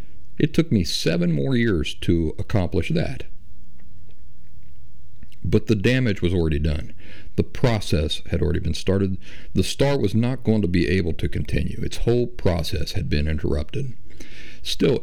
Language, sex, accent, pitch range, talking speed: English, male, American, 85-115 Hz, 150 wpm